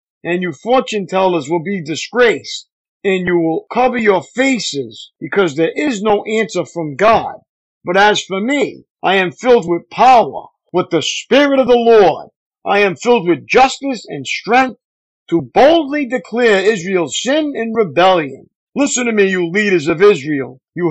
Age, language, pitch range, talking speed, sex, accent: 50-69, English, 175-245 Hz, 165 wpm, male, American